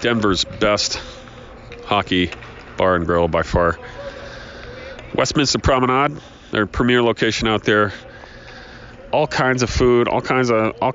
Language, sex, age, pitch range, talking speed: English, male, 40-59, 95-125 Hz, 110 wpm